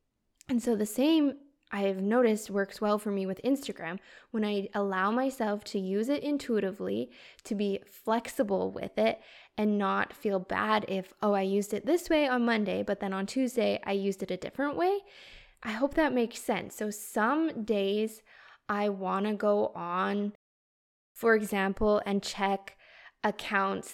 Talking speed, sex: 165 wpm, female